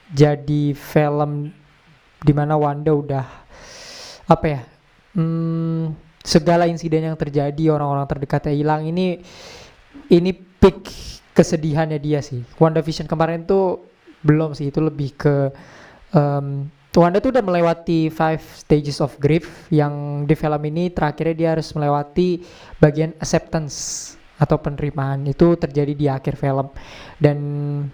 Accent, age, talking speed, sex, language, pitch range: native, 20-39, 120 wpm, male, Indonesian, 145-170 Hz